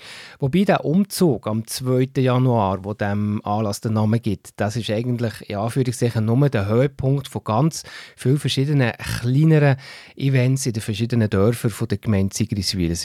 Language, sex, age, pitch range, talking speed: German, male, 30-49, 105-140 Hz, 155 wpm